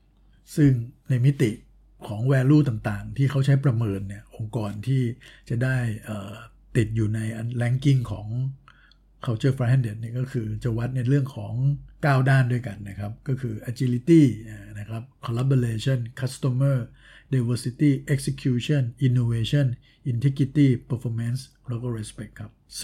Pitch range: 110-130 Hz